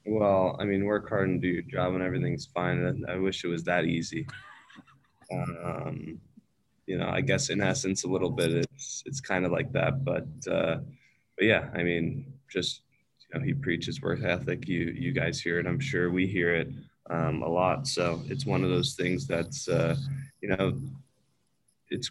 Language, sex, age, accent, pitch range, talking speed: English, male, 20-39, American, 90-135 Hz, 195 wpm